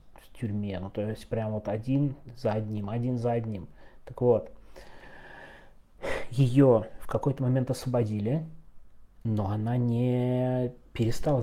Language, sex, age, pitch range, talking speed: Russian, male, 20-39, 100-120 Hz, 120 wpm